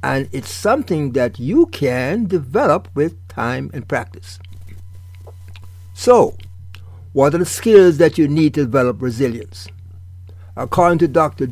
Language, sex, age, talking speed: English, male, 60-79, 130 wpm